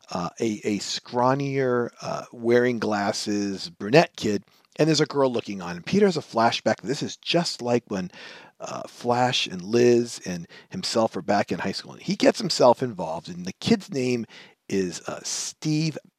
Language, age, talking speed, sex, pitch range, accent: English, 40-59, 180 wpm, male, 105-145 Hz, American